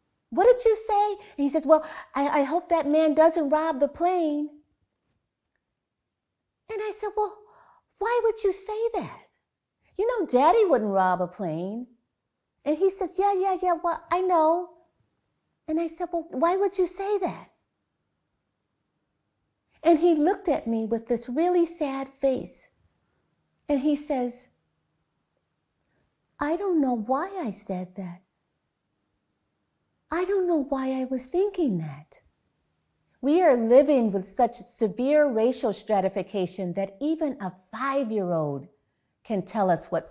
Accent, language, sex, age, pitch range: American, Korean, female, 50-69, 200-325 Hz